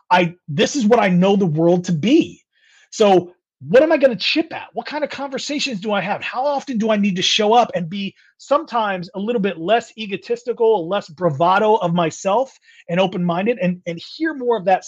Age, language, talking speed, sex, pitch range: 30-49, English, 220 wpm, male, 175-240 Hz